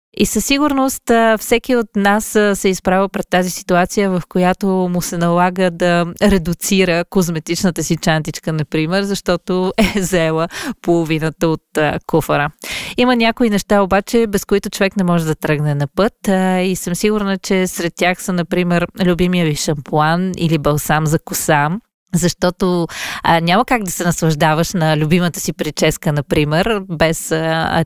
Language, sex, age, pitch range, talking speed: Bulgarian, female, 20-39, 165-205 Hz, 150 wpm